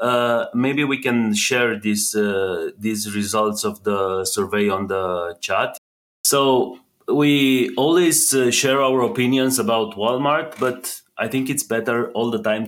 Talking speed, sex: 145 wpm, male